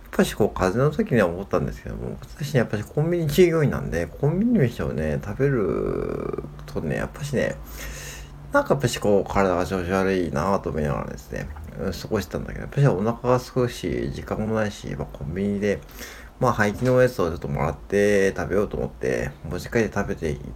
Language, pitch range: Japanese, 75-110 Hz